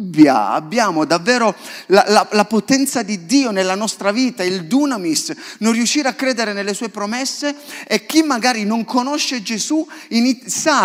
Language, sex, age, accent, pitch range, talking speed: Italian, male, 30-49, native, 205-270 Hz, 150 wpm